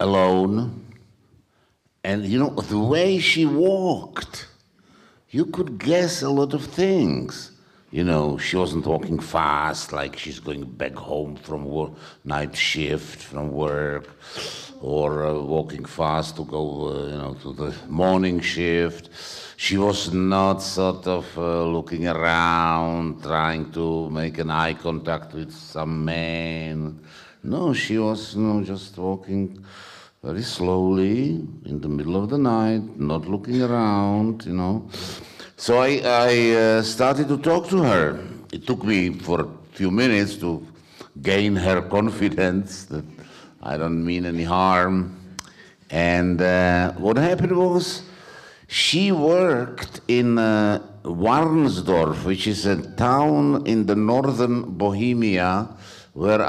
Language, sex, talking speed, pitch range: German, male, 135 wpm, 80-110 Hz